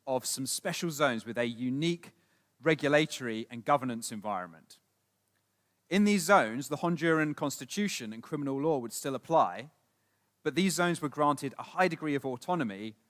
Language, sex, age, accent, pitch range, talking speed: Polish, male, 30-49, British, 115-160 Hz, 150 wpm